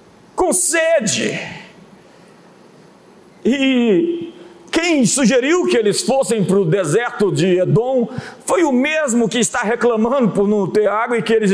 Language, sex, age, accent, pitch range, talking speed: Portuguese, male, 50-69, Brazilian, 215-290 Hz, 135 wpm